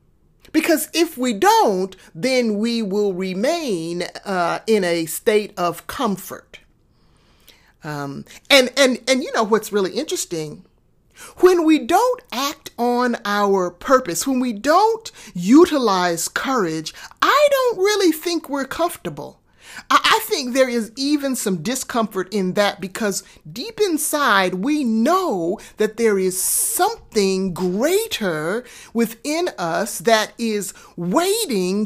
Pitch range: 195-290 Hz